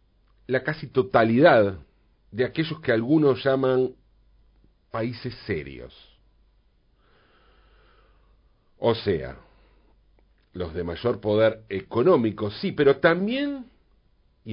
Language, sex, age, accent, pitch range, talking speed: Spanish, male, 40-59, Argentinian, 95-150 Hz, 85 wpm